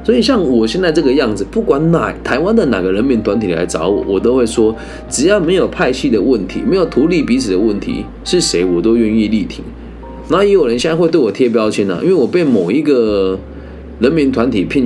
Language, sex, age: Chinese, male, 20-39